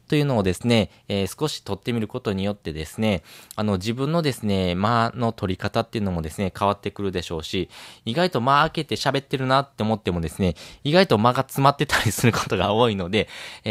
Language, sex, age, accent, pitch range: Japanese, male, 20-39, native, 95-130 Hz